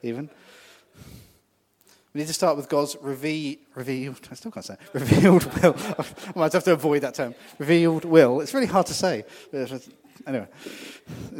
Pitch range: 115-155 Hz